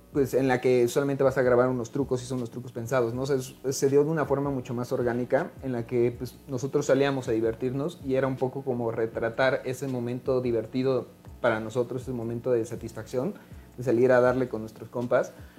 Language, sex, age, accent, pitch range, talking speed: Spanish, male, 30-49, Mexican, 115-135 Hz, 210 wpm